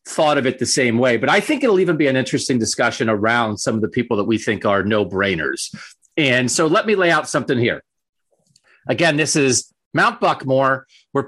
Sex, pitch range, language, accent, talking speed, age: male, 120-170 Hz, English, American, 215 wpm, 40-59